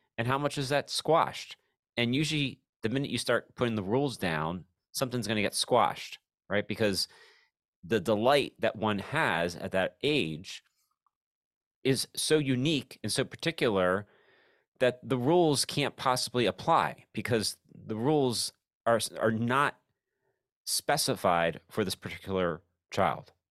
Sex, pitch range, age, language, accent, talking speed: male, 90-125 Hz, 30-49, English, American, 140 wpm